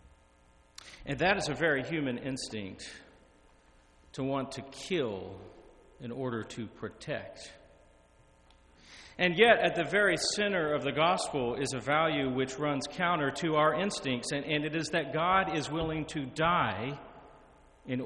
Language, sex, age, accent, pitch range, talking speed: English, male, 40-59, American, 125-170 Hz, 145 wpm